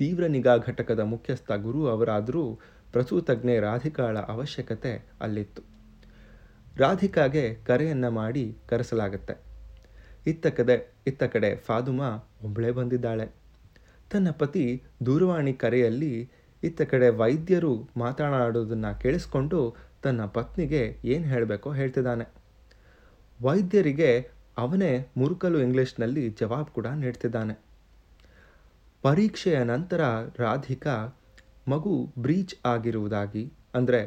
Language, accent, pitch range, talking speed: Kannada, native, 110-140 Hz, 85 wpm